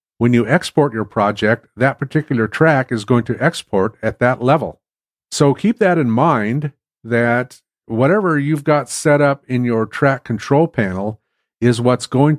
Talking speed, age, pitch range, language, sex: 165 wpm, 50-69, 115-135 Hz, English, male